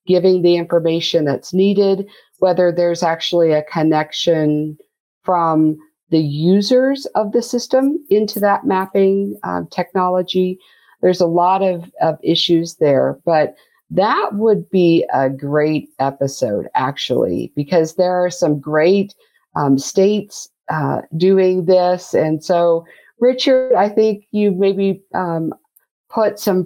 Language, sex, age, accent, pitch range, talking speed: English, female, 50-69, American, 155-195 Hz, 125 wpm